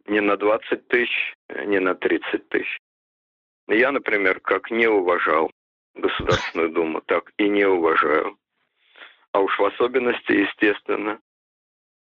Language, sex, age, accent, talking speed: Russian, male, 50-69, native, 120 wpm